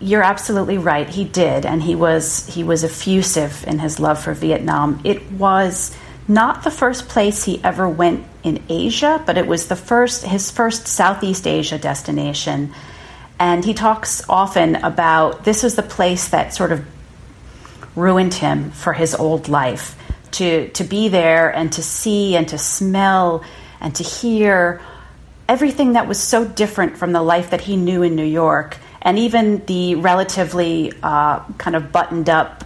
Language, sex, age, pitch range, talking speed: English, female, 40-59, 160-200 Hz, 165 wpm